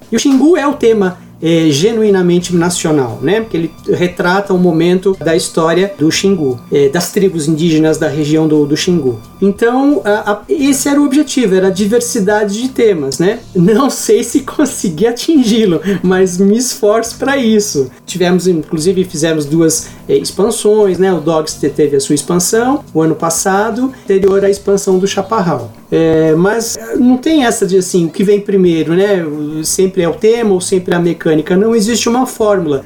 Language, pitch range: Portuguese, 165-225 Hz